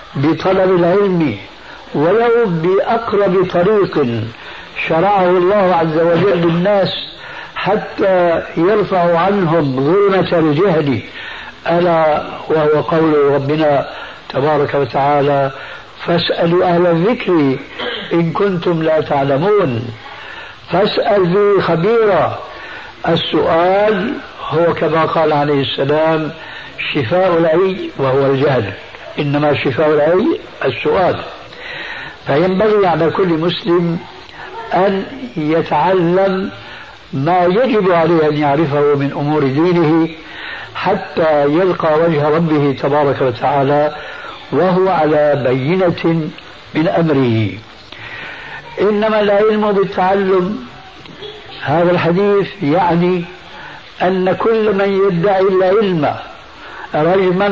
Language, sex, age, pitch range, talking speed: Arabic, male, 60-79, 150-190 Hz, 85 wpm